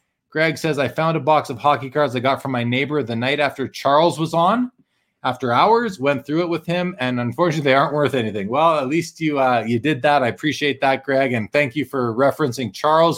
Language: English